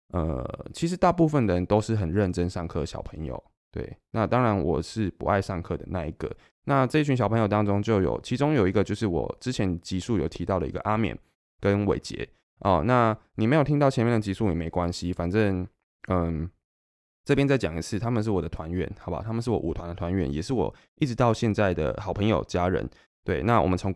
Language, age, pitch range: Chinese, 20-39, 90-115 Hz